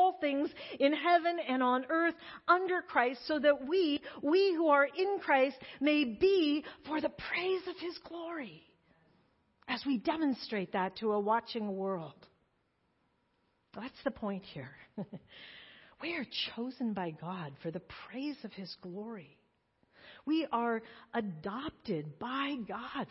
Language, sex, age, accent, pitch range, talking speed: English, female, 50-69, American, 205-285 Hz, 140 wpm